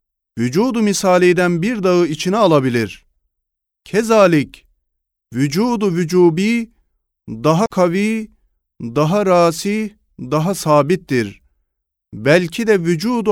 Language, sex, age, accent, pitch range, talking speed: Turkish, male, 40-59, native, 120-195 Hz, 80 wpm